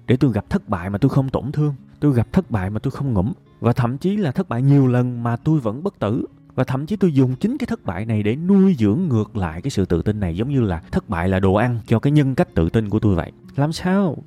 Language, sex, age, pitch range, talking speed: Vietnamese, male, 20-39, 95-140 Hz, 295 wpm